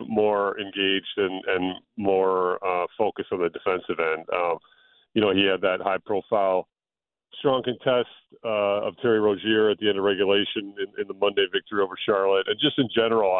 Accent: American